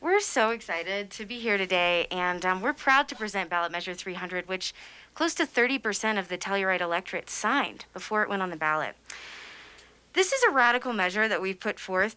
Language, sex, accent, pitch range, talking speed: English, female, American, 175-230 Hz, 195 wpm